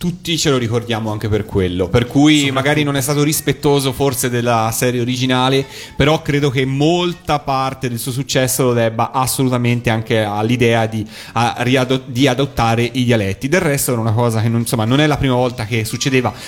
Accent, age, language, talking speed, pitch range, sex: native, 30-49, Italian, 190 wpm, 115-140 Hz, male